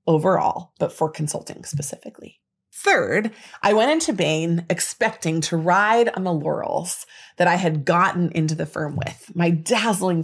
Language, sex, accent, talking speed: English, female, American, 150 wpm